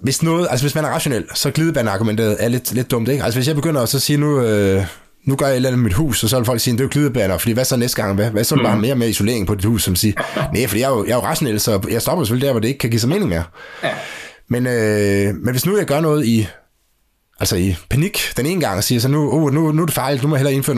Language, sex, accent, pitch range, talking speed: Danish, male, native, 110-145 Hz, 320 wpm